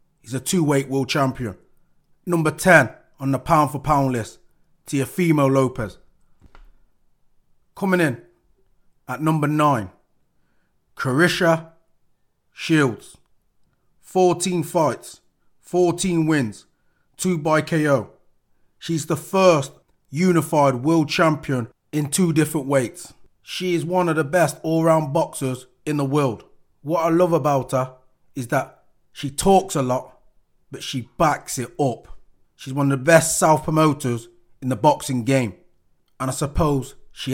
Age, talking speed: 30-49, 130 wpm